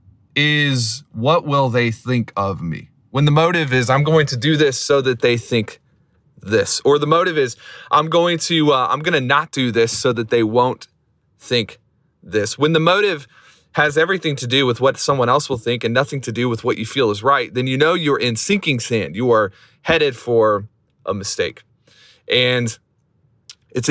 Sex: male